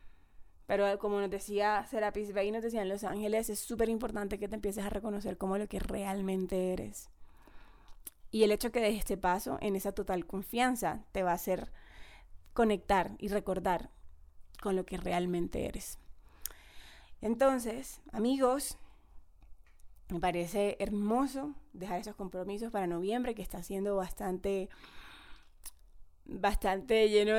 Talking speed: 140 wpm